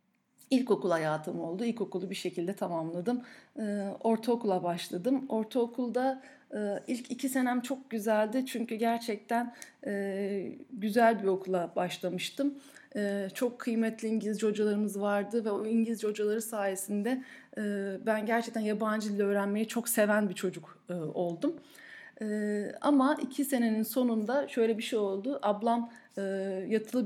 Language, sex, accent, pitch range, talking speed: Turkish, female, native, 195-245 Hz, 130 wpm